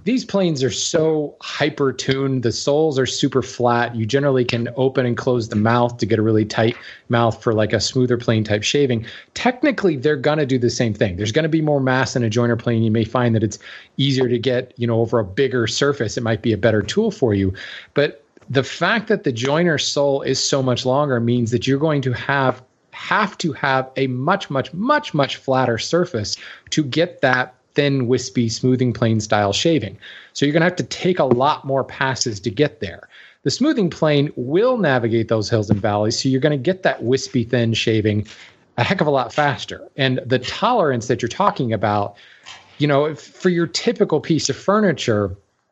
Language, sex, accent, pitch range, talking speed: English, male, American, 115-145 Hz, 210 wpm